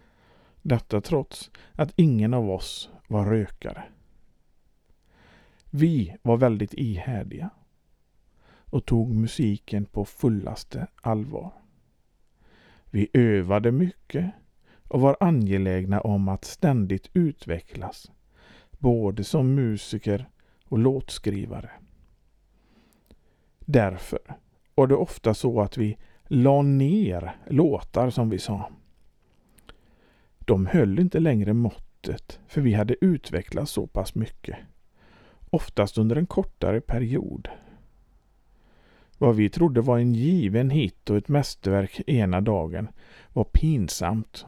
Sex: male